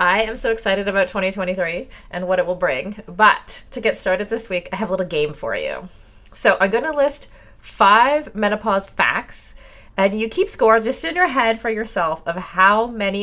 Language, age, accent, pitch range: English, 30-49, American, 140-215 Hz